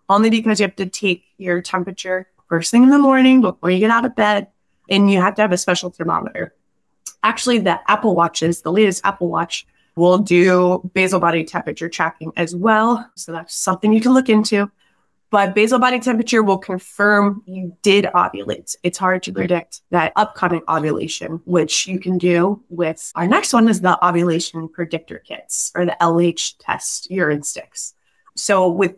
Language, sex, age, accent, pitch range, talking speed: English, female, 20-39, American, 175-220 Hz, 180 wpm